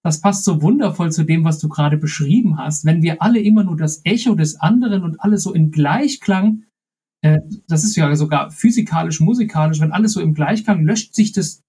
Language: German